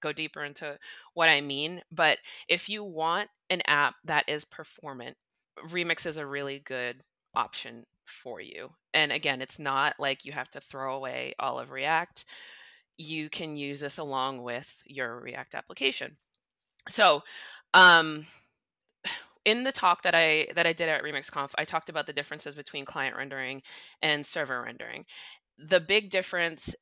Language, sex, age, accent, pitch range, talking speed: English, female, 20-39, American, 140-170 Hz, 160 wpm